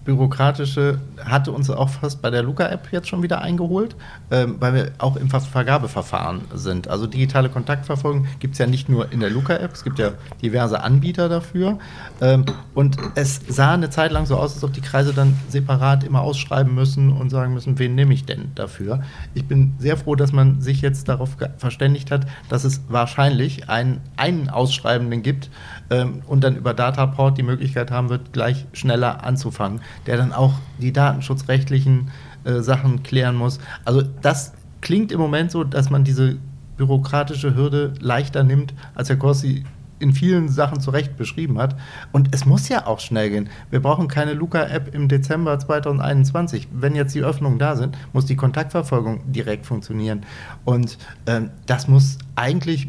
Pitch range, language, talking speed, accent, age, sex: 125-140 Hz, German, 170 wpm, German, 40-59, male